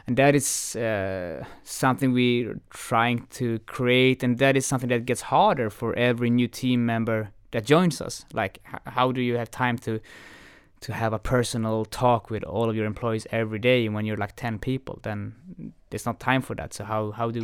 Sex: male